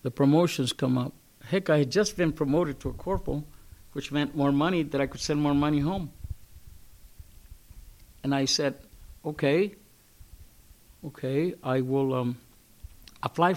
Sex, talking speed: male, 145 wpm